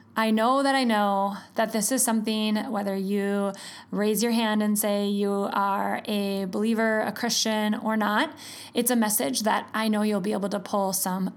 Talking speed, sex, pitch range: 190 wpm, female, 205-245 Hz